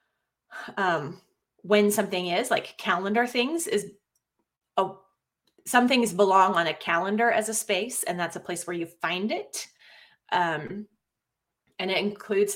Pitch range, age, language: 185-235 Hz, 30-49, English